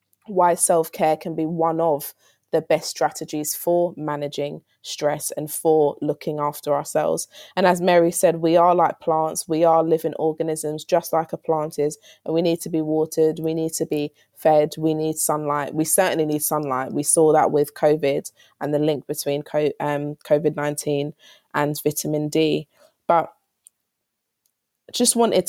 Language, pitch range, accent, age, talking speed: English, 150-175 Hz, British, 20-39, 160 wpm